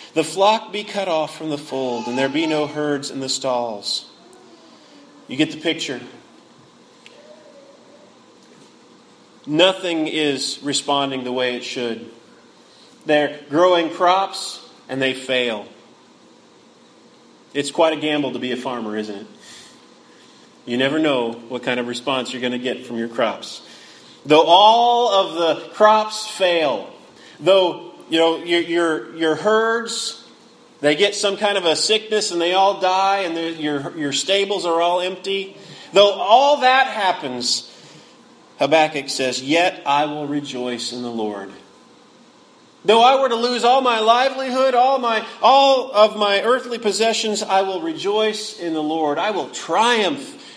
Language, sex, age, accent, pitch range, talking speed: English, male, 30-49, American, 130-200 Hz, 150 wpm